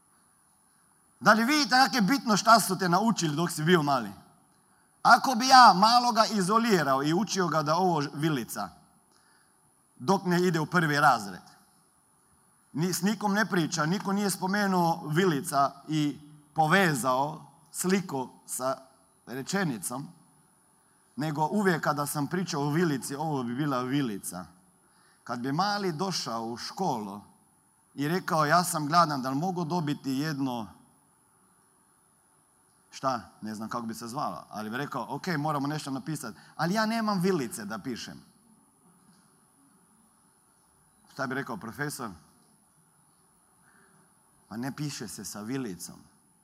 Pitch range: 135-185 Hz